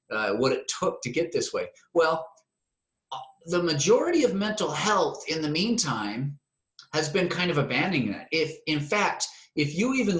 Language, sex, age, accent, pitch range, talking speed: English, male, 30-49, American, 150-220 Hz, 170 wpm